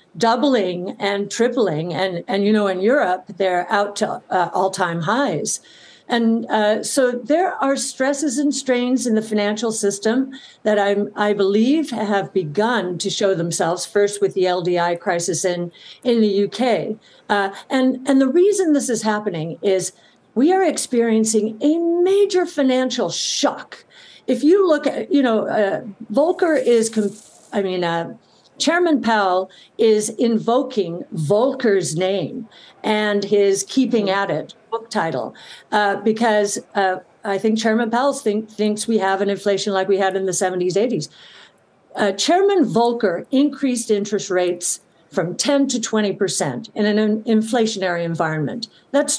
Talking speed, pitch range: 150 wpm, 195-255 Hz